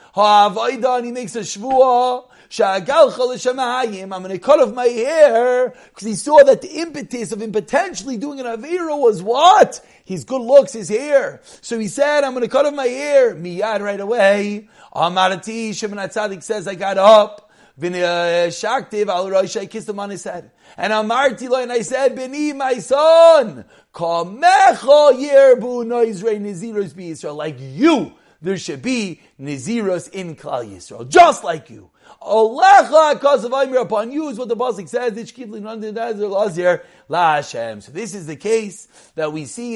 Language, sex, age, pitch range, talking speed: English, male, 40-59, 195-260 Hz, 160 wpm